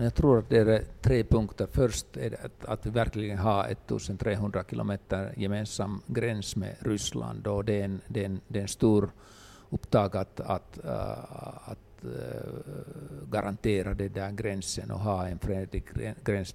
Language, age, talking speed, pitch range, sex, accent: Swedish, 60-79, 155 wpm, 95-110 Hz, male, Finnish